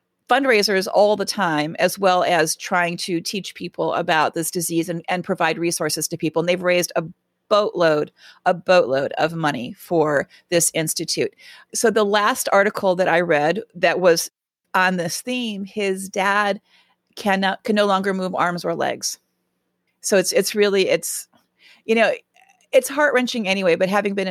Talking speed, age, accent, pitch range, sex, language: 165 wpm, 40-59, American, 175-225 Hz, female, English